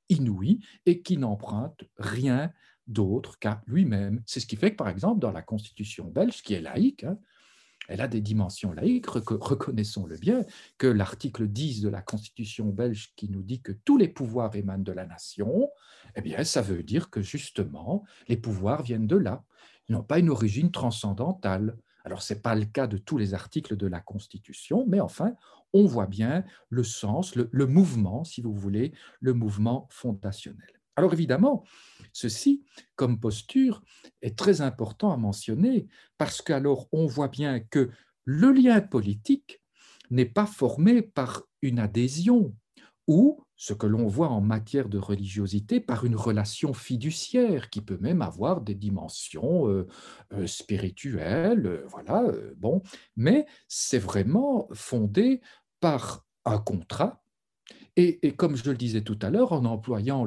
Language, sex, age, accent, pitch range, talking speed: French, male, 50-69, French, 105-165 Hz, 160 wpm